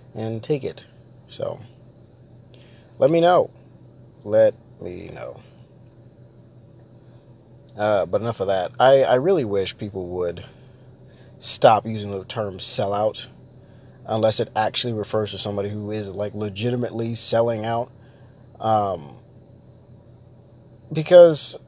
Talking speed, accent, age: 110 wpm, American, 20-39